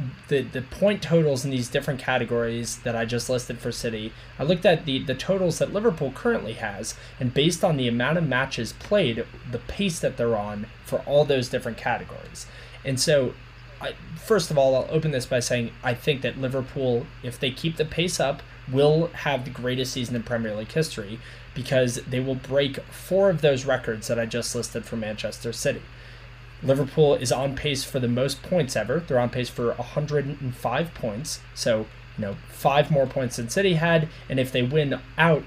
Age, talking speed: 20-39, 195 wpm